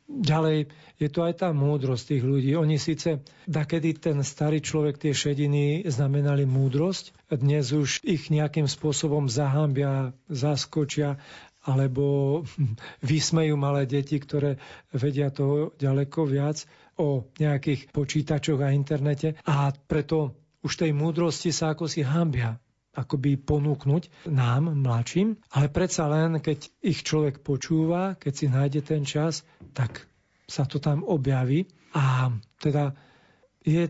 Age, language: 40-59, Slovak